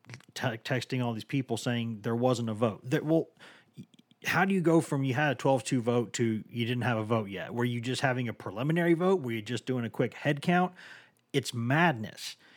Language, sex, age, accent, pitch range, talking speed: English, male, 40-59, American, 120-150 Hz, 220 wpm